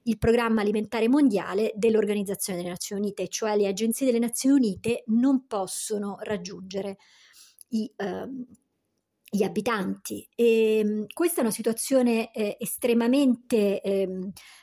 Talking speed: 110 wpm